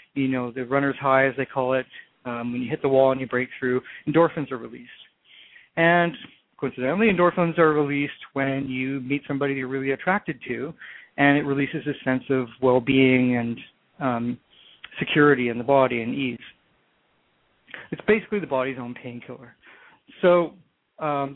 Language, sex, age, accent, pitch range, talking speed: English, male, 40-59, American, 130-155 Hz, 165 wpm